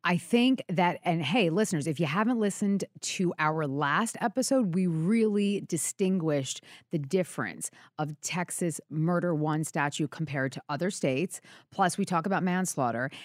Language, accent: English, American